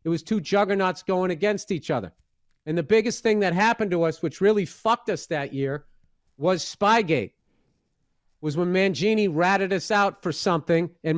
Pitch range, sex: 175-220 Hz, male